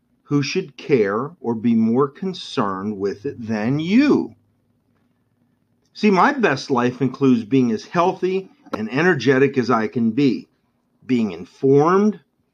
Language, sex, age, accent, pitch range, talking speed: English, male, 40-59, American, 120-170 Hz, 130 wpm